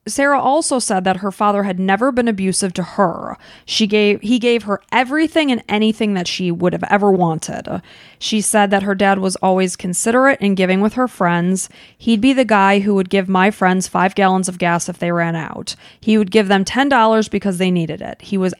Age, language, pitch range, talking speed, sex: 30-49, English, 185-230 Hz, 215 wpm, female